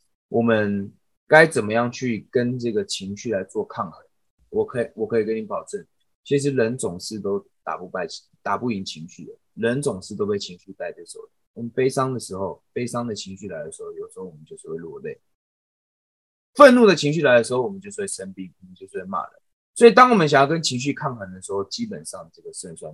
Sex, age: male, 20-39